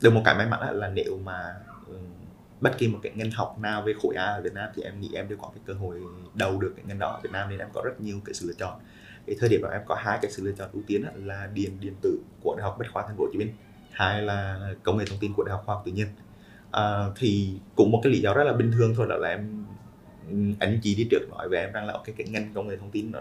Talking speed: 310 wpm